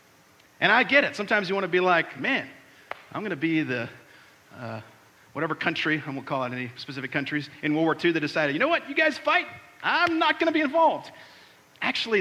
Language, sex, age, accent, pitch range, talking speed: English, male, 50-69, American, 125-210 Hz, 220 wpm